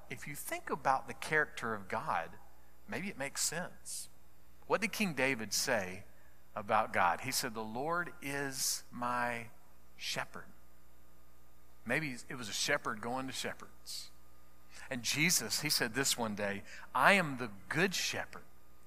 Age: 50-69